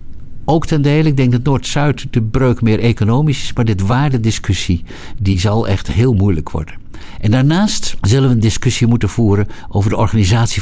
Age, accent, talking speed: 60-79, Dutch, 180 wpm